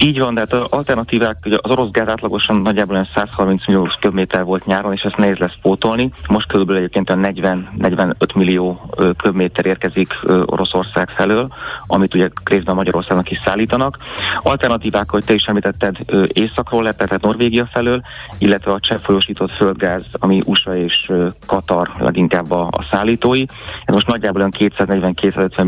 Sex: male